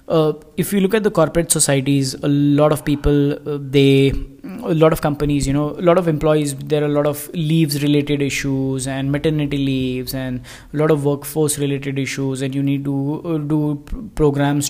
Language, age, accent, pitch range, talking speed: English, 20-39, Indian, 135-150 Hz, 200 wpm